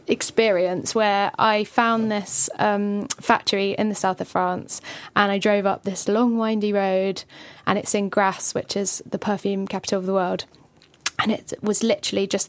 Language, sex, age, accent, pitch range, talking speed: English, female, 10-29, British, 195-225 Hz, 180 wpm